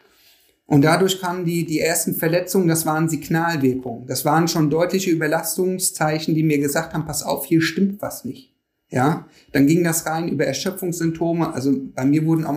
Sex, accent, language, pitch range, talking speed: male, German, German, 145-185 Hz, 175 wpm